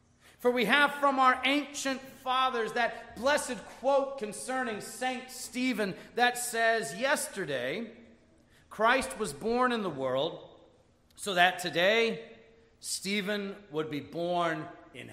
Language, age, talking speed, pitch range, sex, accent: English, 40-59, 120 wpm, 200-265 Hz, male, American